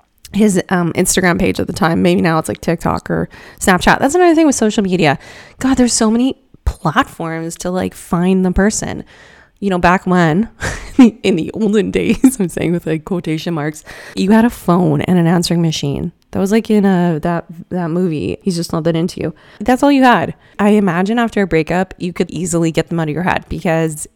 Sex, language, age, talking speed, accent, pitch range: female, English, 20-39, 210 wpm, American, 165-210 Hz